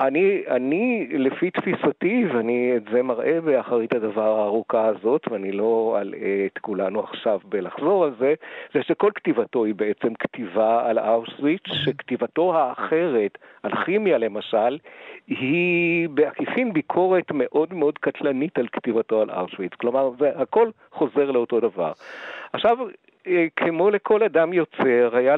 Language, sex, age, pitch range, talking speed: Hebrew, male, 50-69, 120-190 Hz, 130 wpm